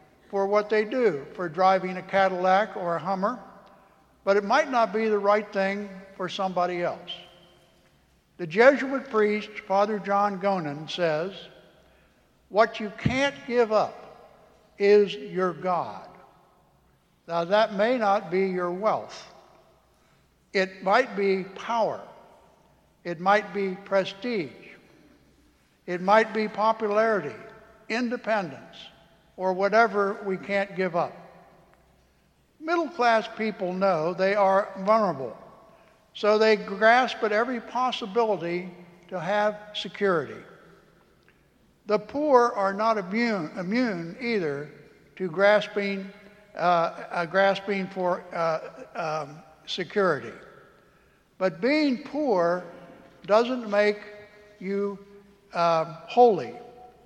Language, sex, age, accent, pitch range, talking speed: English, male, 60-79, American, 185-220 Hz, 105 wpm